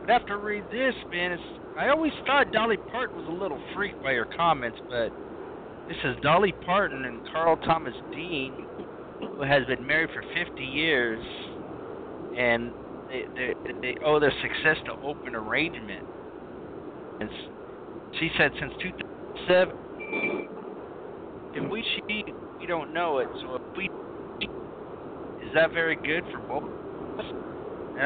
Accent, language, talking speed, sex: American, English, 150 wpm, male